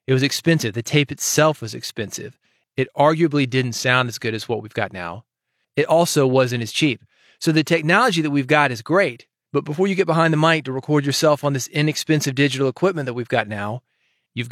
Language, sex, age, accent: English, male, 30-49, American